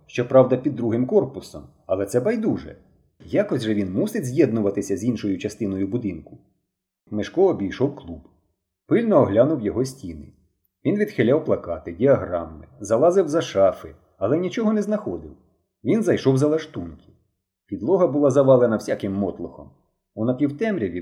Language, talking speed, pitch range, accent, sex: Ukrainian, 130 wpm, 105-155 Hz, native, male